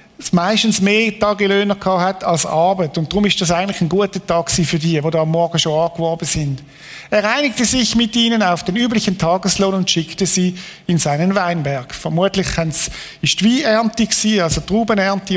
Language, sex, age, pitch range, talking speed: German, male, 50-69, 170-210 Hz, 185 wpm